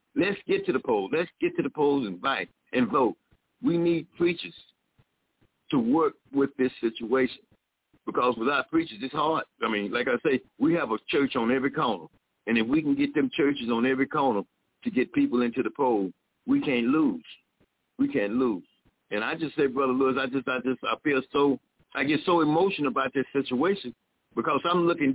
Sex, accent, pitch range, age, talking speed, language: male, American, 130-175 Hz, 60-79, 200 wpm, English